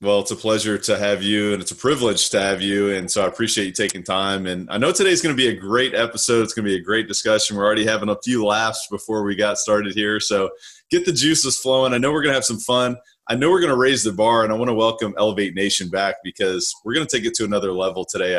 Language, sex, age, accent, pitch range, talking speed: English, male, 30-49, American, 100-125 Hz, 285 wpm